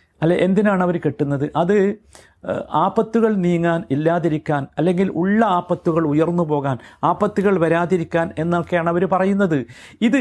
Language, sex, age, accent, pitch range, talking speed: Malayalam, male, 50-69, native, 155-200 Hz, 110 wpm